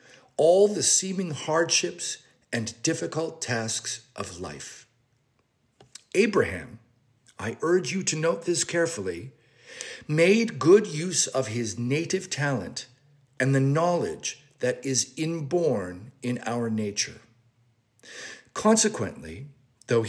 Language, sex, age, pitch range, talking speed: English, male, 50-69, 120-170 Hz, 105 wpm